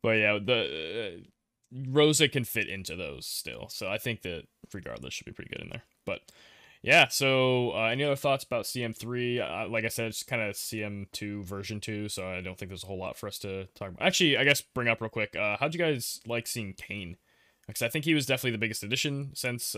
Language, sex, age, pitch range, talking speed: English, male, 20-39, 95-120 Hz, 235 wpm